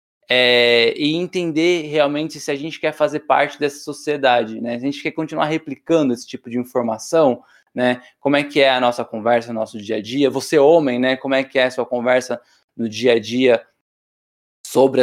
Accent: Brazilian